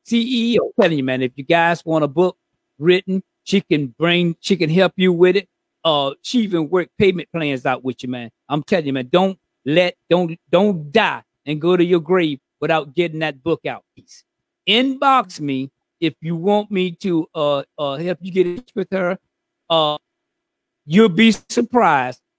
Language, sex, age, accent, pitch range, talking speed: English, male, 50-69, American, 145-190 Hz, 190 wpm